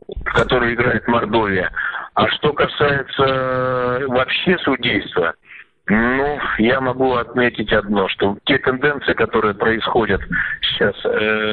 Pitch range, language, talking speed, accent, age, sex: 110-135 Hz, Russian, 105 wpm, native, 50-69, male